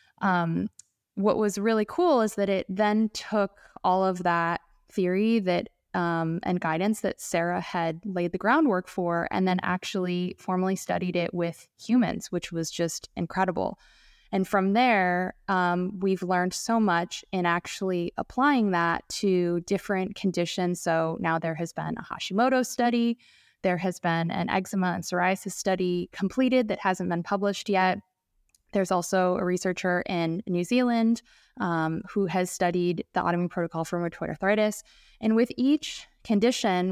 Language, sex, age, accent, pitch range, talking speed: English, female, 20-39, American, 175-200 Hz, 155 wpm